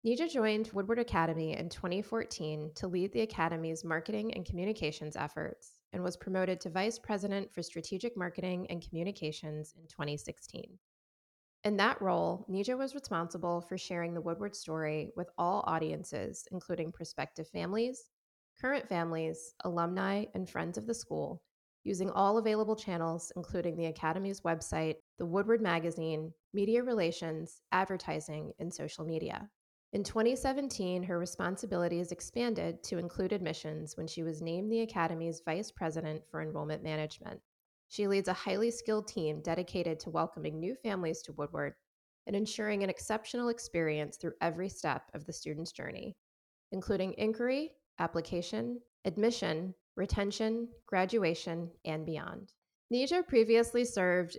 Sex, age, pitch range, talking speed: female, 20-39, 165-215 Hz, 135 wpm